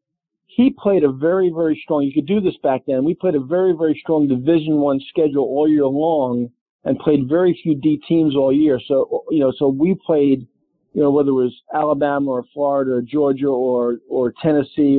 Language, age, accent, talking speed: English, 50-69, American, 205 wpm